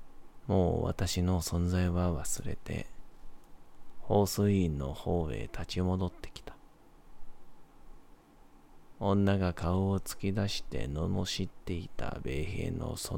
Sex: male